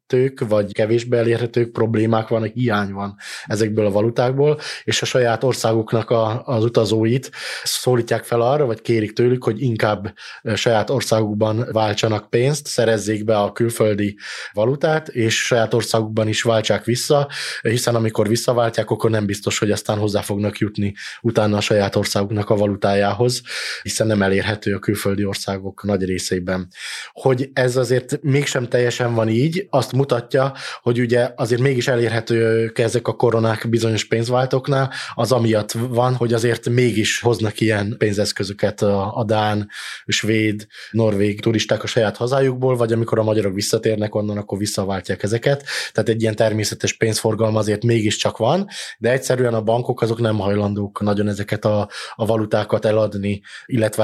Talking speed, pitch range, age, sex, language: 150 wpm, 105-120 Hz, 20-39, male, Hungarian